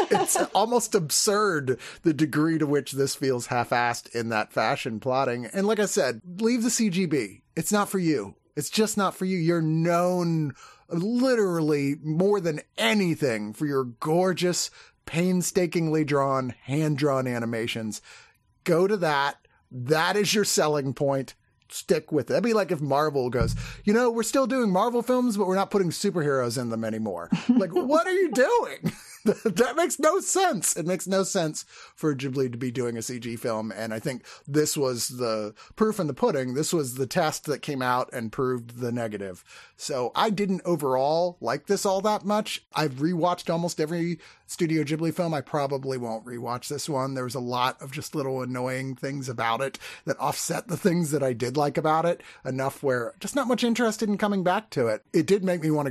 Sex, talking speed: male, 190 wpm